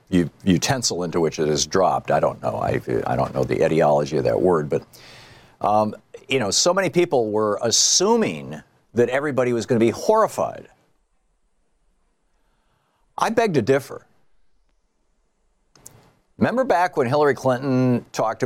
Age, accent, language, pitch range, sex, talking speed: 50-69, American, English, 95-135 Hz, male, 145 wpm